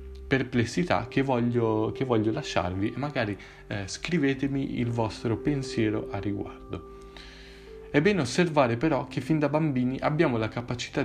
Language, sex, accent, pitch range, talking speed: Italian, male, native, 105-150 Hz, 135 wpm